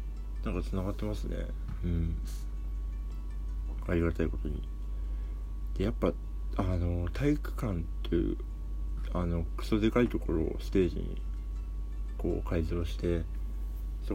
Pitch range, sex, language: 75-95 Hz, male, Japanese